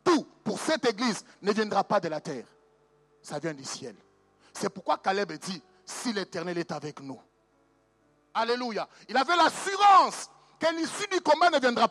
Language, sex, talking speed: French, male, 160 wpm